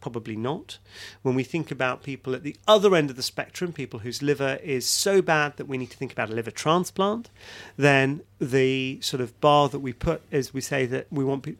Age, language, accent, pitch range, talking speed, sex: 40-59, English, British, 125-155 Hz, 230 wpm, male